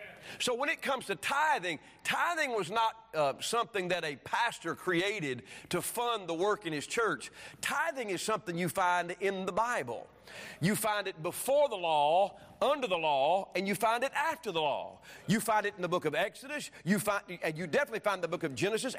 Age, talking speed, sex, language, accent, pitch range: 40-59, 195 wpm, male, English, American, 135-205 Hz